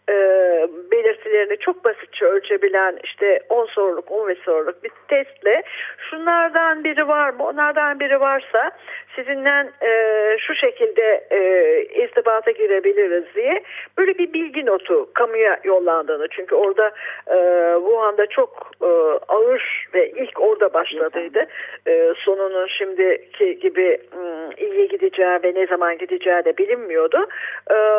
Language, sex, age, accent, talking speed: Turkish, female, 50-69, native, 125 wpm